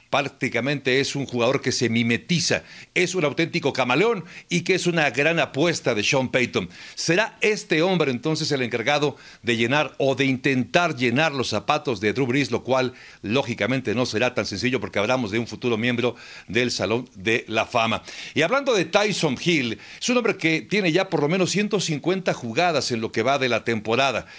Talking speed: 190 wpm